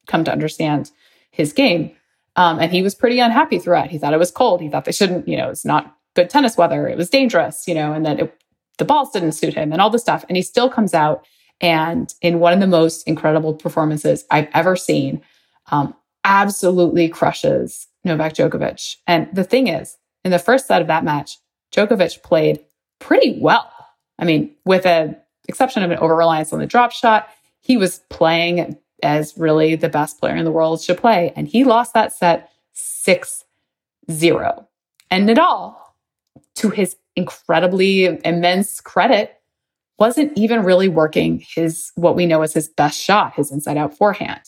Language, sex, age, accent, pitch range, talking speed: English, female, 20-39, American, 160-195 Hz, 180 wpm